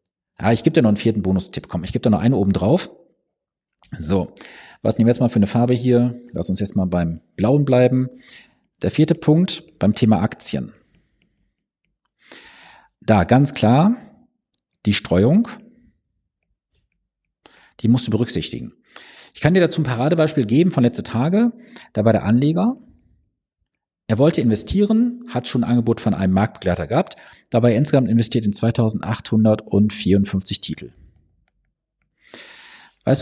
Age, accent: 50-69, German